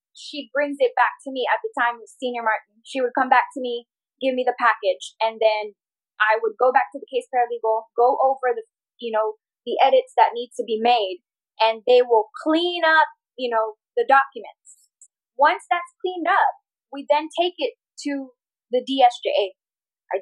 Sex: female